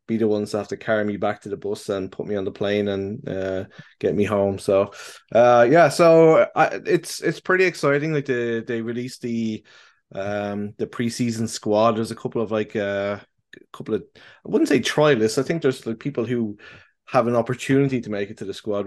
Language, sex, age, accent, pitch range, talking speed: English, male, 20-39, Irish, 105-130 Hz, 220 wpm